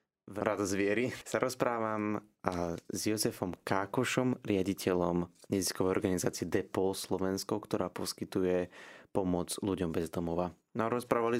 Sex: male